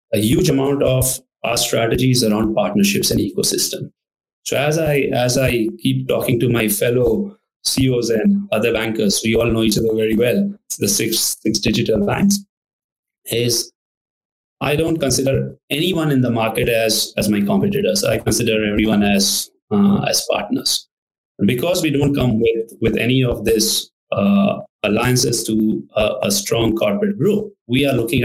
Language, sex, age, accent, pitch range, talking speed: English, male, 30-49, Indian, 110-155 Hz, 165 wpm